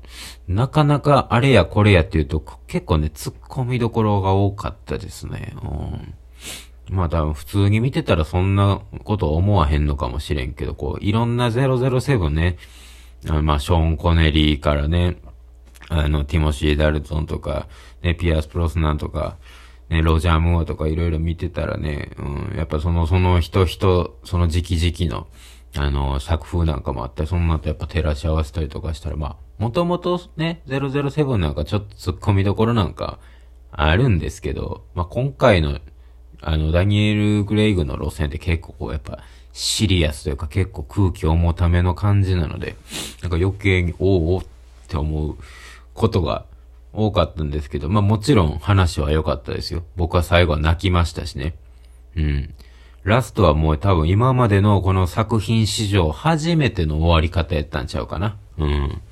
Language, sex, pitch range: Japanese, male, 75-100 Hz